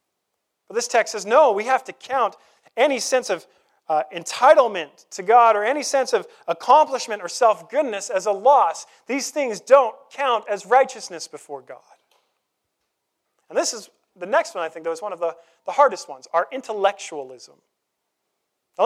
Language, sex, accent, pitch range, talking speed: English, male, American, 175-255 Hz, 165 wpm